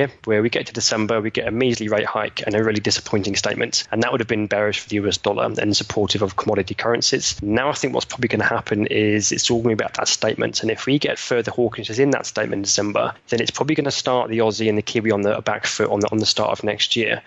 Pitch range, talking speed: 110-125 Hz, 290 wpm